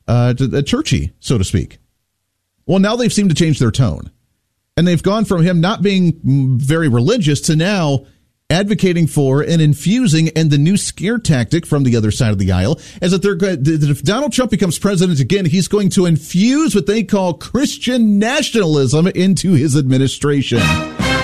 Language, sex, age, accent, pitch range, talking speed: English, male, 40-59, American, 115-170 Hz, 170 wpm